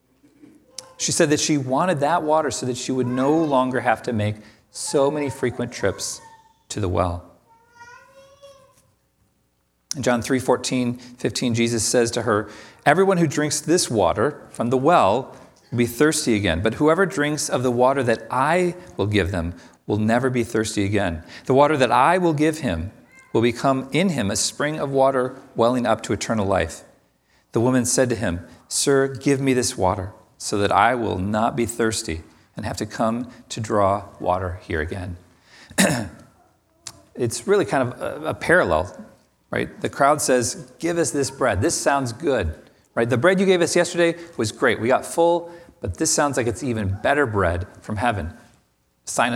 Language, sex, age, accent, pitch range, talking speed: English, male, 40-59, American, 105-150 Hz, 180 wpm